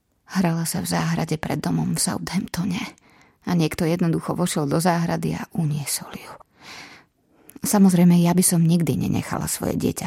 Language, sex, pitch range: Slovak, female, 160-185 Hz